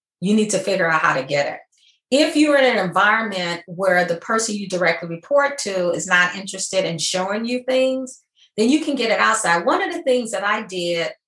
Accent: American